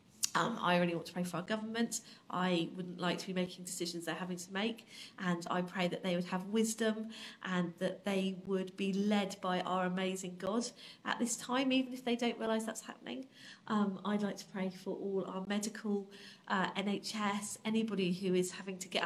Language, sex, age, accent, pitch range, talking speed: English, female, 40-59, British, 185-215 Hz, 205 wpm